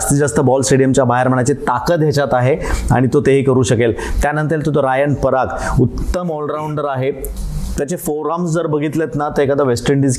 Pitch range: 125-150 Hz